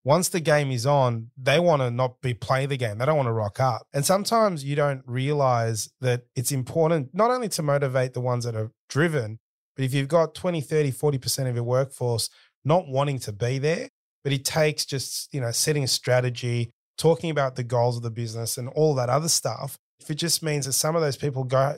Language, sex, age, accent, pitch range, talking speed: English, male, 30-49, Australian, 125-155 Hz, 225 wpm